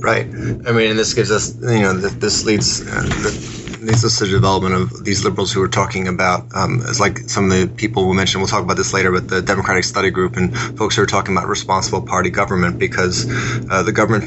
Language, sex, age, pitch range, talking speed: English, male, 20-39, 95-115 Hz, 225 wpm